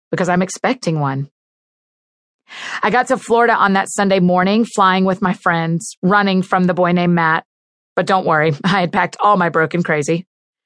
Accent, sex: American, female